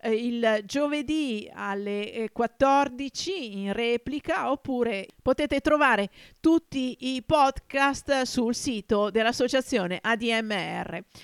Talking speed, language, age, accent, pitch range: 85 wpm, Italian, 50-69, native, 220-275 Hz